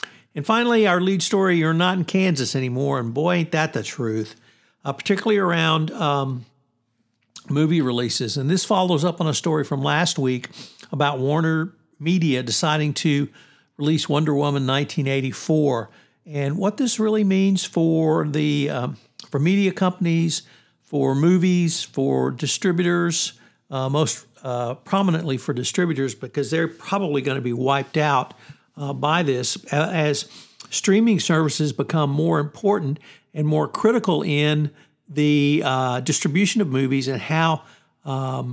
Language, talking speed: English, 140 wpm